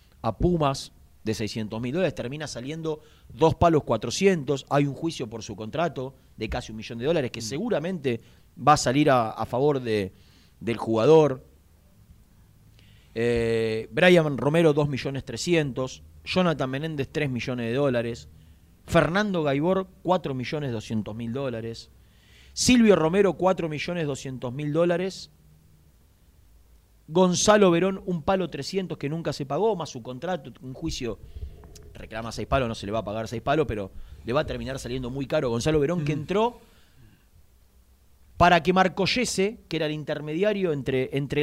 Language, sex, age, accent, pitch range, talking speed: Spanish, male, 40-59, Argentinian, 110-160 Hz, 150 wpm